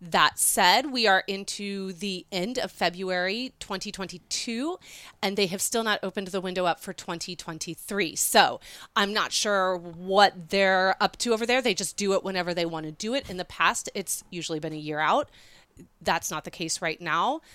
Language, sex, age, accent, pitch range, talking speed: English, female, 30-49, American, 175-205 Hz, 190 wpm